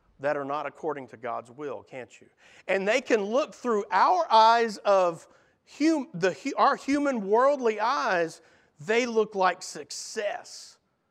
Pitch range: 155-225 Hz